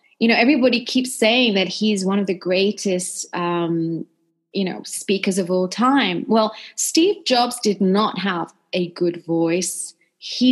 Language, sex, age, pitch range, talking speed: English, female, 30-49, 180-240 Hz, 160 wpm